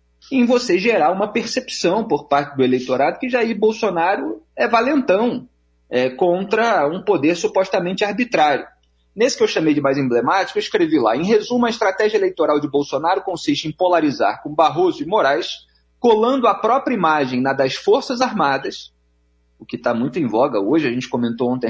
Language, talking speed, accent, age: Portuguese, 170 wpm, Brazilian, 40-59